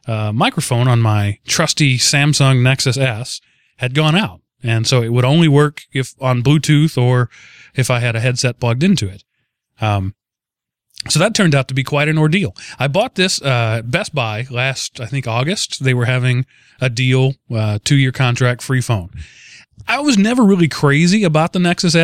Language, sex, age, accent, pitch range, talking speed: English, male, 30-49, American, 120-160 Hz, 180 wpm